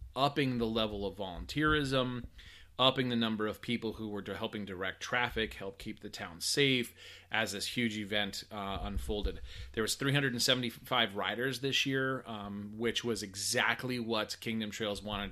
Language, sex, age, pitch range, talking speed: English, male, 30-49, 100-125 Hz, 155 wpm